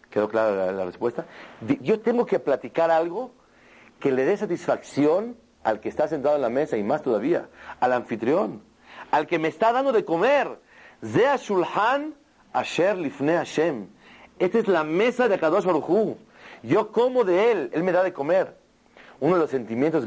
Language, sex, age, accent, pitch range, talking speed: Spanish, male, 40-59, Mexican, 125-200 Hz, 180 wpm